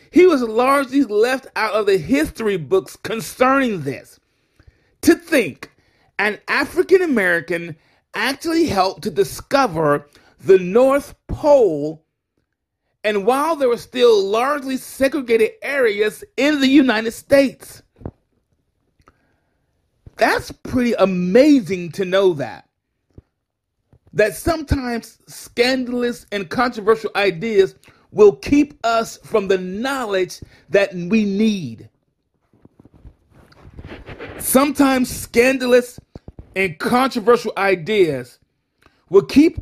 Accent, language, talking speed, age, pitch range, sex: American, English, 95 wpm, 40-59, 180-270 Hz, male